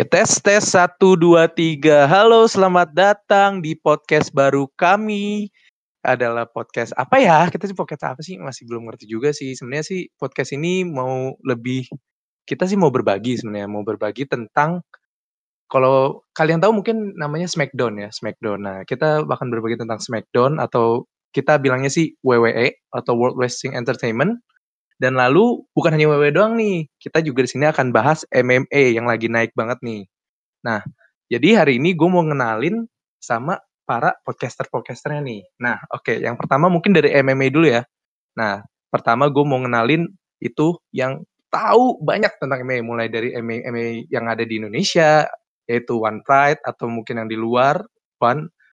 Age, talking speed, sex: 20-39, 160 wpm, male